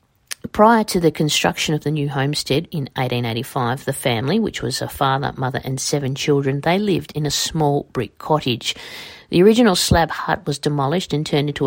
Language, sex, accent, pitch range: English, female, Australian, 140-165 Hz